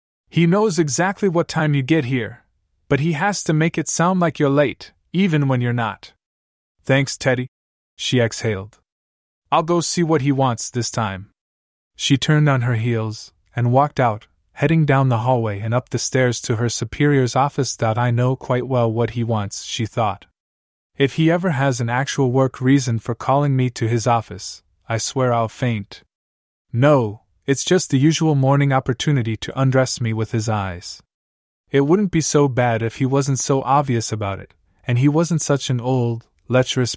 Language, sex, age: English, male, 20-39